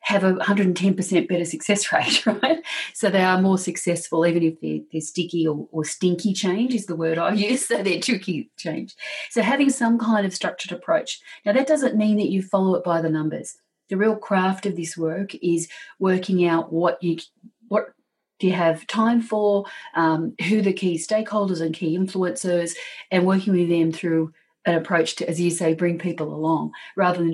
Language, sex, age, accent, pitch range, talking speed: English, female, 40-59, Australian, 165-205 Hz, 195 wpm